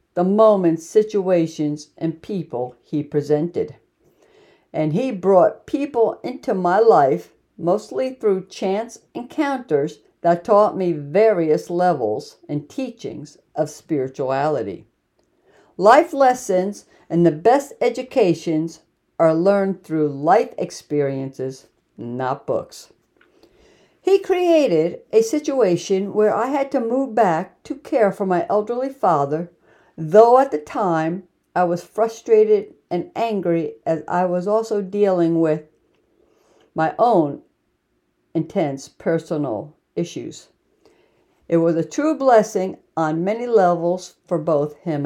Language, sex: English, female